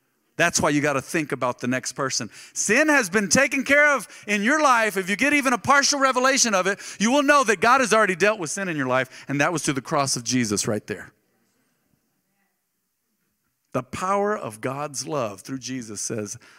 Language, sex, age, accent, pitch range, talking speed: English, male, 40-59, American, 130-205 Hz, 215 wpm